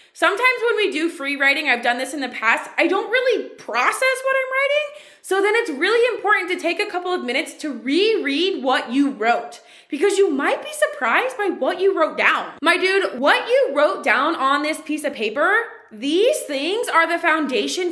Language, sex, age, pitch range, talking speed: English, female, 20-39, 275-390 Hz, 205 wpm